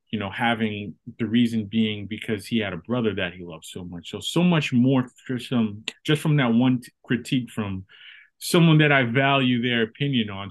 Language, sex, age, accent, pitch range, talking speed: English, male, 30-49, American, 105-125 Hz, 200 wpm